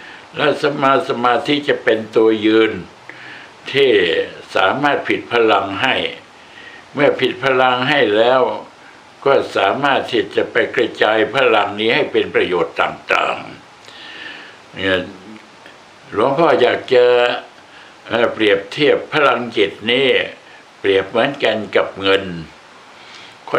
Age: 60-79